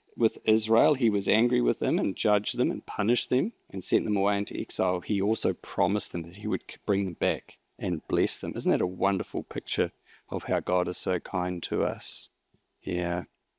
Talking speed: 205 wpm